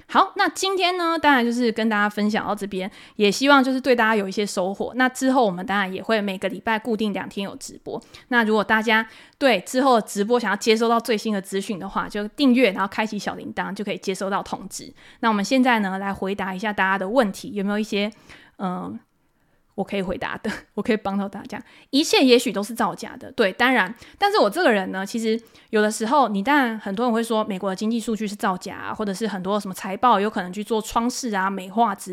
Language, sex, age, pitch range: Chinese, female, 20-39, 200-255 Hz